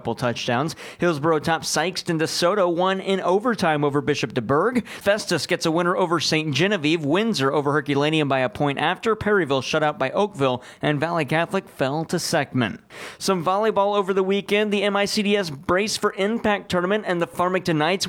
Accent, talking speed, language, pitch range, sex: American, 170 wpm, English, 155-195 Hz, male